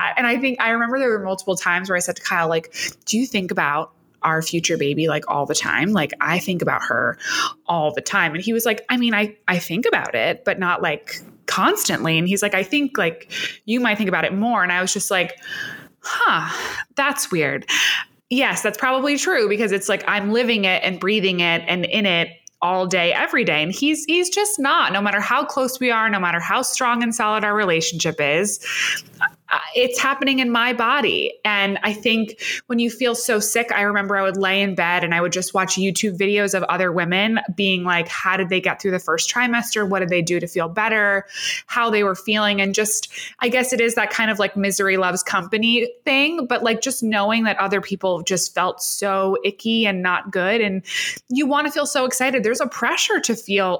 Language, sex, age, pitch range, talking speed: English, female, 20-39, 185-240 Hz, 225 wpm